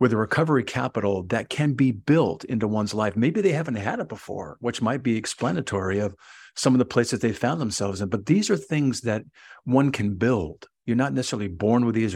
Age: 50-69